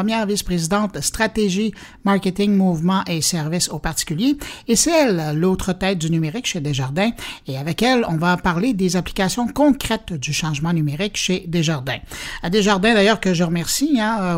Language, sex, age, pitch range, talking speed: French, male, 60-79, 165-225 Hz, 165 wpm